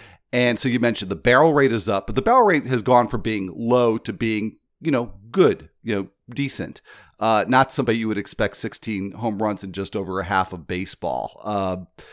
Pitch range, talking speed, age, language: 95-125 Hz, 215 wpm, 40-59, English